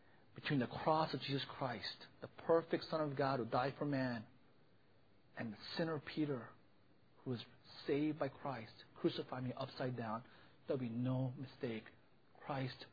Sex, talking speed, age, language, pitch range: male, 160 wpm, 40-59, English, 125-160 Hz